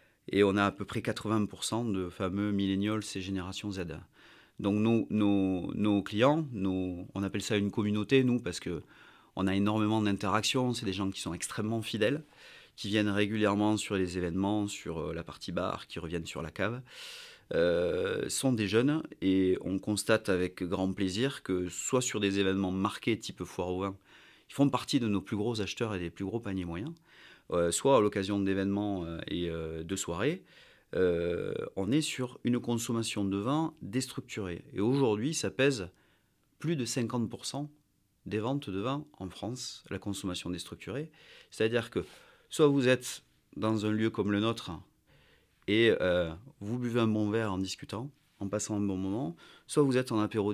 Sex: male